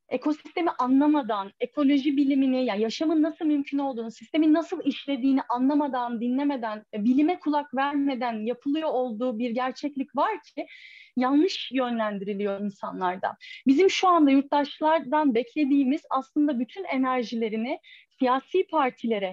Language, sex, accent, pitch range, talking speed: Turkish, female, native, 245-310 Hz, 110 wpm